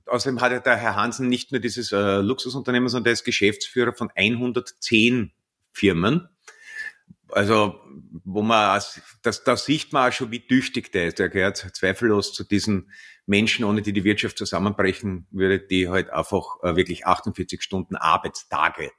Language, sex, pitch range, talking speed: German, male, 95-125 Hz, 160 wpm